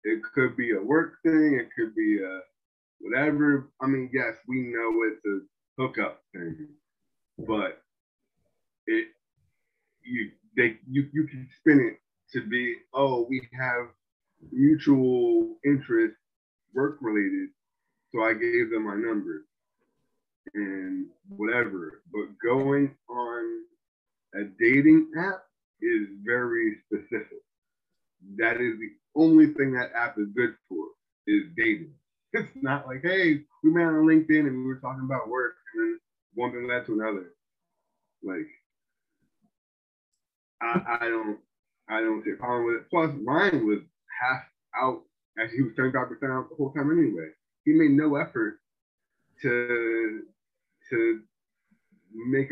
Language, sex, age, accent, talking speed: English, male, 20-39, American, 135 wpm